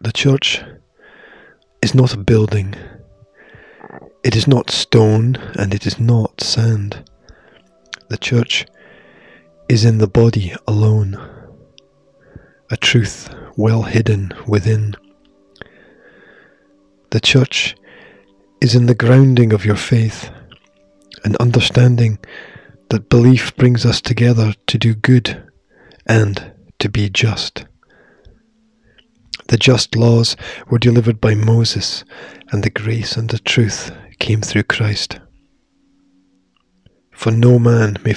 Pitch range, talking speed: 100-125 Hz, 110 wpm